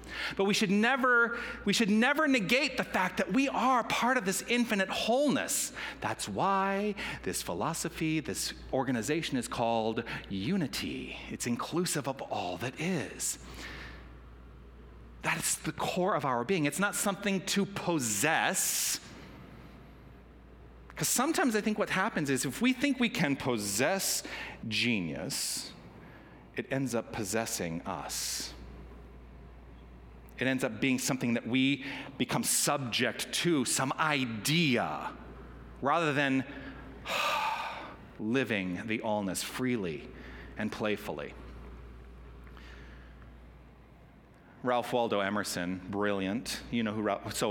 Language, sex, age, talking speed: English, male, 40-59, 115 wpm